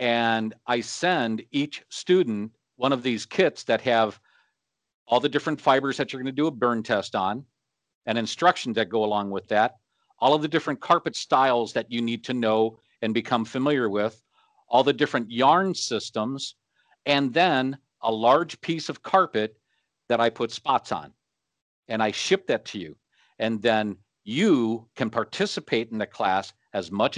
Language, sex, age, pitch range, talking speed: English, male, 50-69, 110-150 Hz, 175 wpm